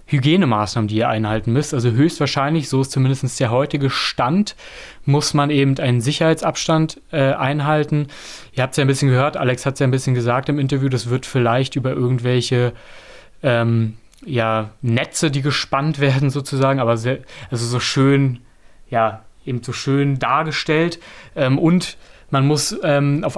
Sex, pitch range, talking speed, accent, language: male, 120-150 Hz, 165 wpm, German, German